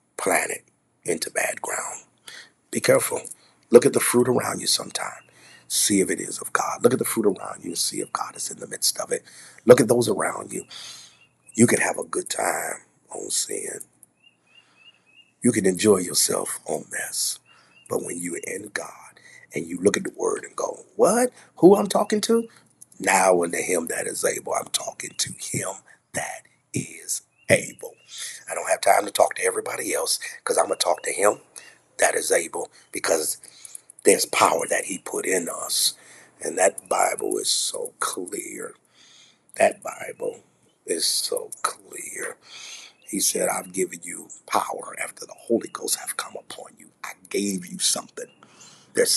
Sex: male